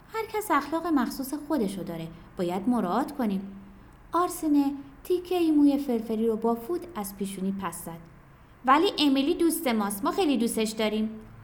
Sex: female